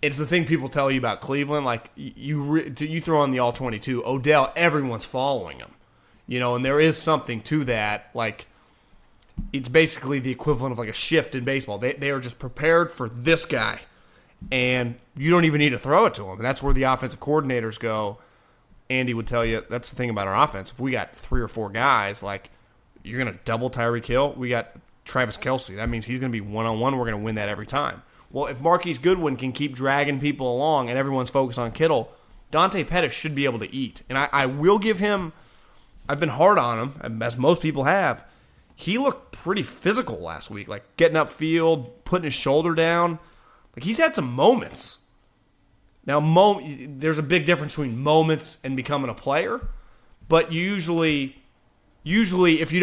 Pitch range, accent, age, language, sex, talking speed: 120-155 Hz, American, 30-49, English, male, 205 wpm